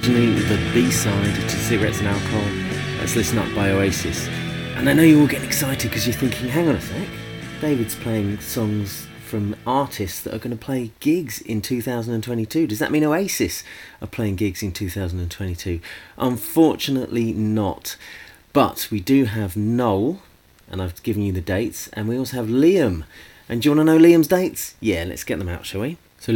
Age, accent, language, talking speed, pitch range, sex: 30-49, British, English, 185 wpm, 95-125 Hz, male